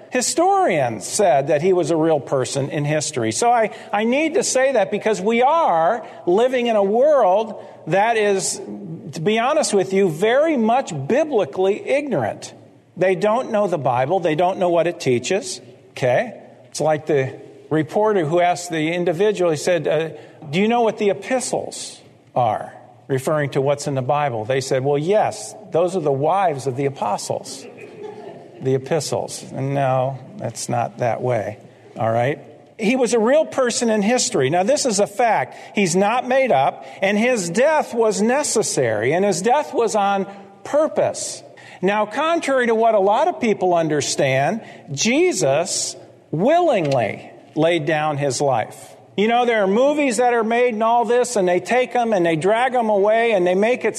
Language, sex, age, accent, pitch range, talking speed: English, male, 50-69, American, 165-240 Hz, 175 wpm